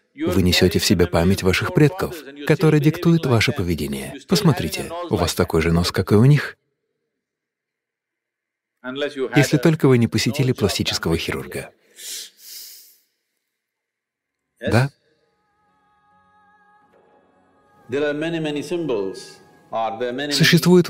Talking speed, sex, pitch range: 85 wpm, male, 95-155 Hz